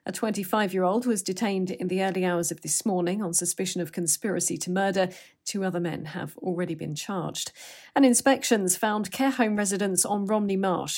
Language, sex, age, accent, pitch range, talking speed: English, female, 40-59, British, 175-230 Hz, 180 wpm